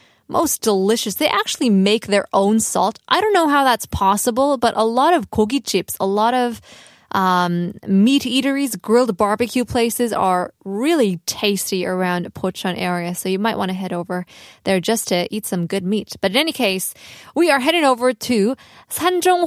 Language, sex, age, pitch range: Korean, female, 20-39, 185-260 Hz